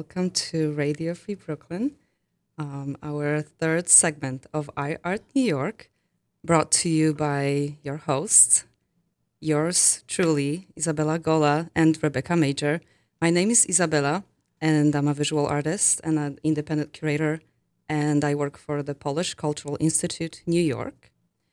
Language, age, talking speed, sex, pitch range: English, 20-39, 135 wpm, female, 145-170 Hz